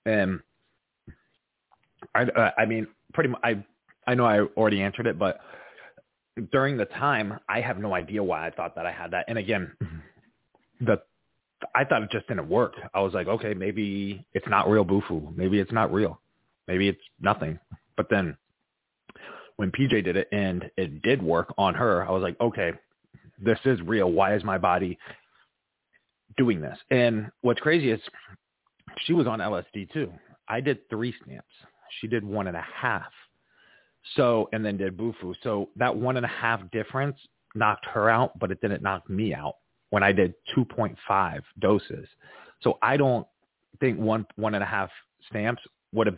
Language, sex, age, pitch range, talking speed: English, male, 30-49, 95-115 Hz, 175 wpm